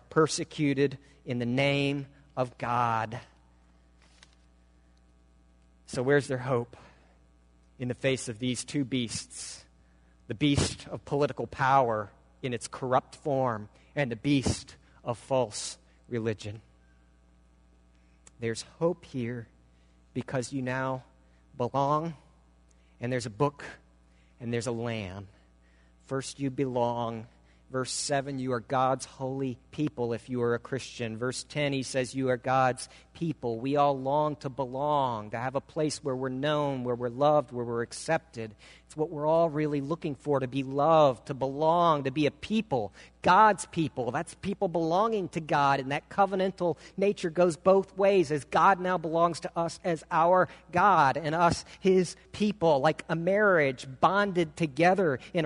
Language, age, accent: English, 40-59, American